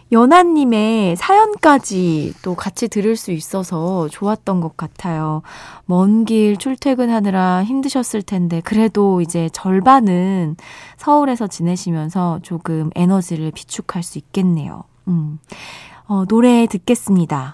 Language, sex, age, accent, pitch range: Korean, female, 20-39, native, 165-240 Hz